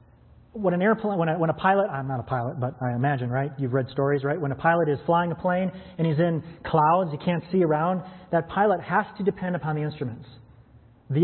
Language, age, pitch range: English, 30-49, 135-180 Hz